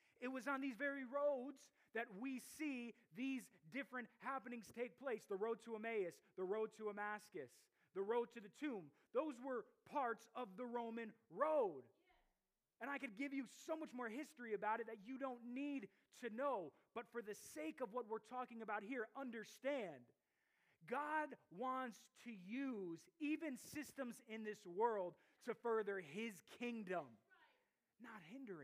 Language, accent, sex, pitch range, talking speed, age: English, American, male, 200-270 Hz, 160 wpm, 30-49